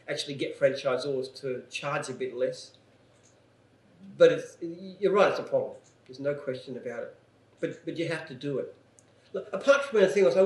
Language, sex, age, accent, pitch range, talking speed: English, male, 40-59, Australian, 140-225 Hz, 190 wpm